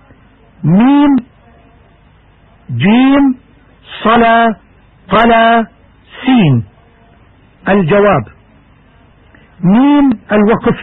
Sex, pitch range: male, 145-230 Hz